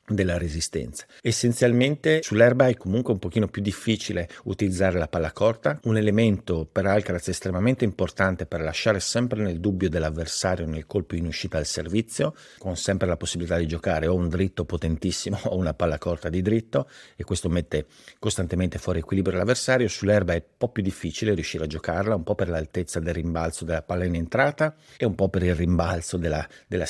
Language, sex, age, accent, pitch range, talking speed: Italian, male, 50-69, native, 85-105 Hz, 185 wpm